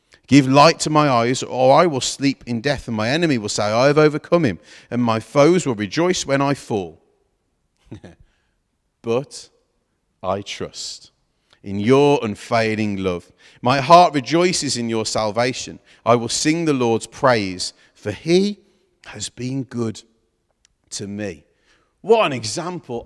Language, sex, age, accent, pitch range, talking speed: English, male, 40-59, British, 100-135 Hz, 150 wpm